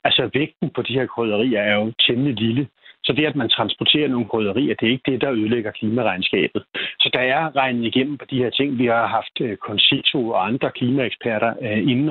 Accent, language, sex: native, Danish, male